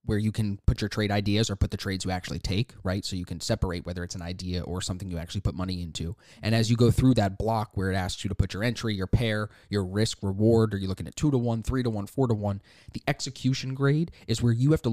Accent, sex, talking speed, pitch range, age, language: American, male, 285 wpm, 100-120 Hz, 20-39, English